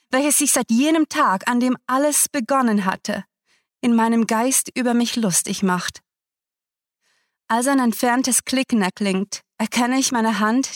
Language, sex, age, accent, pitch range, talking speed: German, female, 30-49, German, 195-240 Hz, 145 wpm